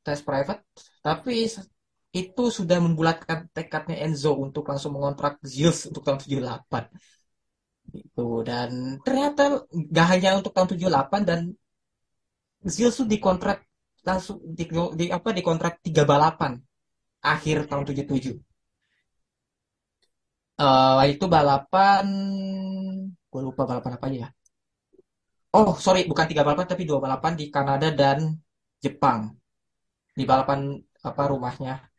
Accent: native